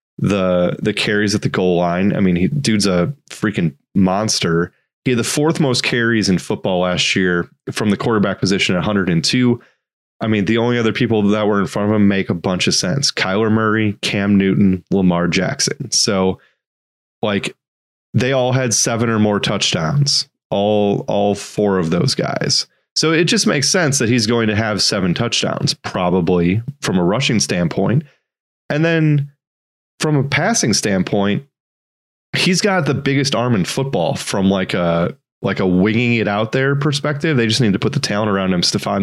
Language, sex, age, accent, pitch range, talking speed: English, male, 30-49, American, 95-130 Hz, 185 wpm